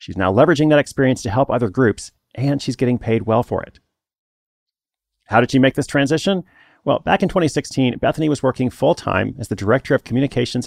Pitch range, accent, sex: 110-135 Hz, American, male